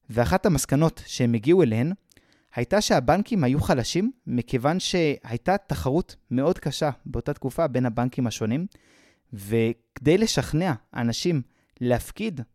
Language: Hebrew